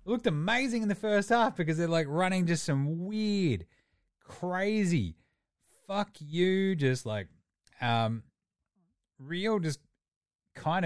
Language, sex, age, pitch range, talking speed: English, male, 30-49, 115-160 Hz, 125 wpm